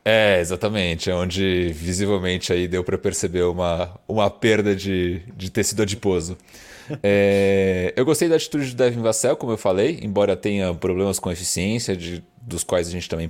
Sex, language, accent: male, Portuguese, Brazilian